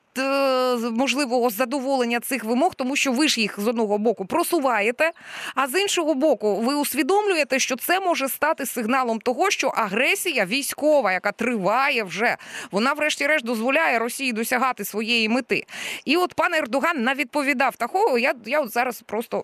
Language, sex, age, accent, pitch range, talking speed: Ukrainian, female, 20-39, native, 220-290 Hz, 150 wpm